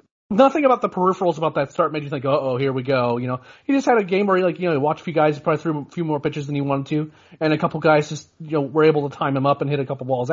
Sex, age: male, 30-49